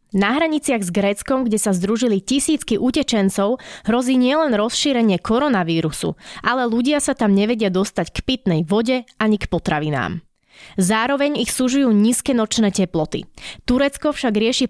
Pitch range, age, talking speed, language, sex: 195-255 Hz, 20-39, 140 wpm, Slovak, female